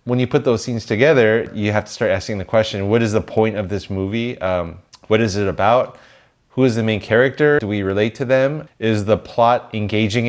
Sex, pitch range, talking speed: male, 100-125 Hz, 225 wpm